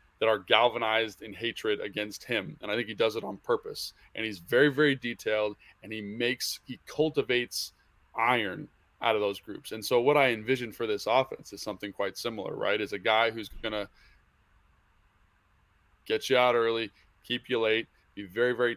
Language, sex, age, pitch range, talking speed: English, male, 20-39, 105-130 Hz, 190 wpm